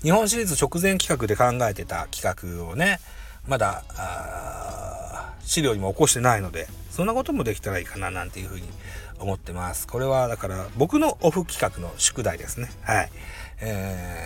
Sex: male